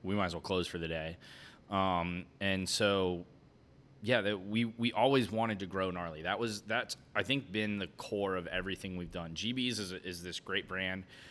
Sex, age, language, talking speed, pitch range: male, 20-39, English, 200 wpm, 90-100 Hz